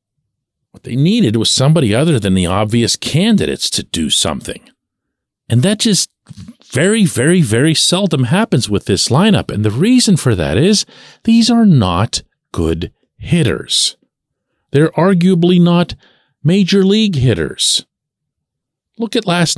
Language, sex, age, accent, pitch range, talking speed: English, male, 40-59, American, 130-210 Hz, 135 wpm